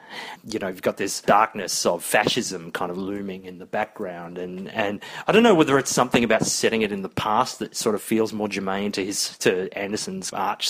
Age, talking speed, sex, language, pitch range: 30-49, 220 wpm, male, English, 100-125 Hz